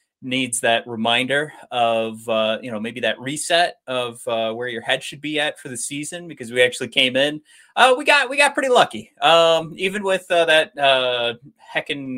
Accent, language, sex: American, English, male